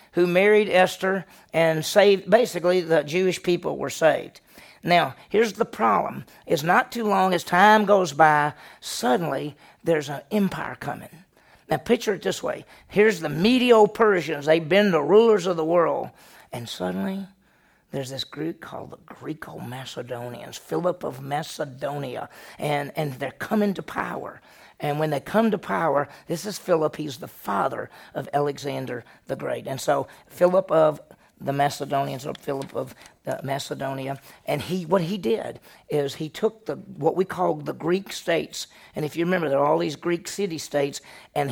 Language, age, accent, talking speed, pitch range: English, 40-59, American, 170 wpm, 145-190 Hz